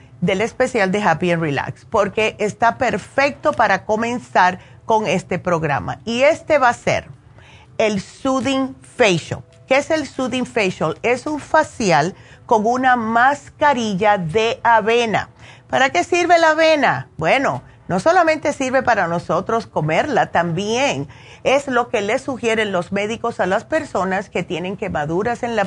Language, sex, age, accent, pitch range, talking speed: Spanish, female, 40-59, American, 180-250 Hz, 145 wpm